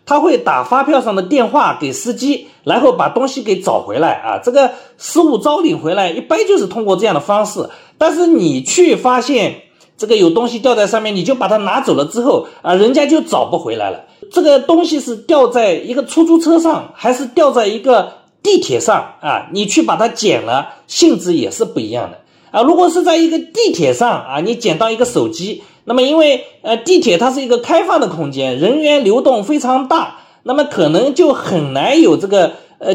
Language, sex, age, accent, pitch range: Chinese, male, 40-59, native, 205-315 Hz